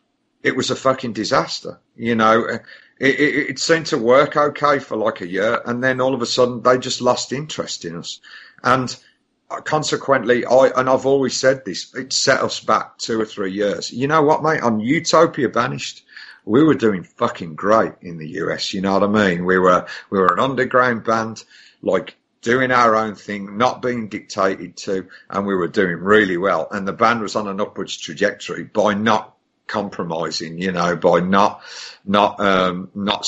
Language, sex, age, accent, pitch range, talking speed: English, male, 50-69, British, 95-130 Hz, 190 wpm